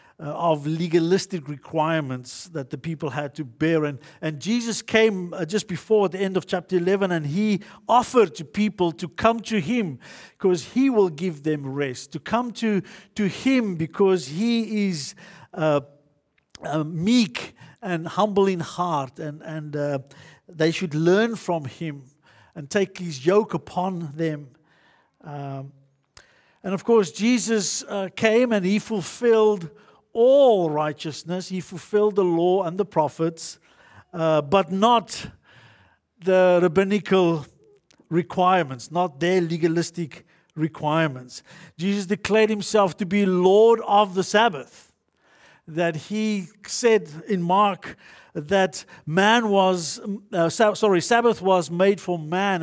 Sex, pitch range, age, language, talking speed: male, 160-205 Hz, 50-69, English, 135 wpm